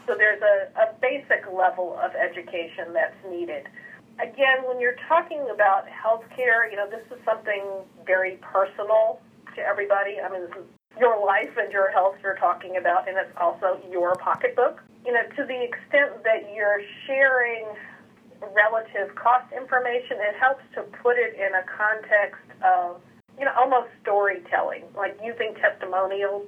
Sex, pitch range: female, 190-225 Hz